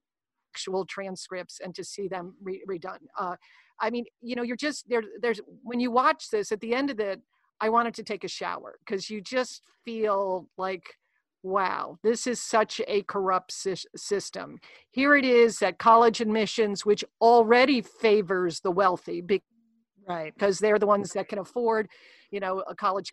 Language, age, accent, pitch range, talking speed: English, 50-69, American, 200-235 Hz, 170 wpm